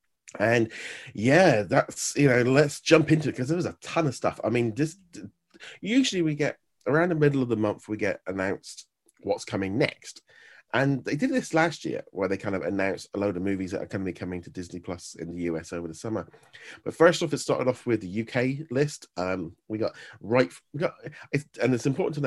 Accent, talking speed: British, 230 wpm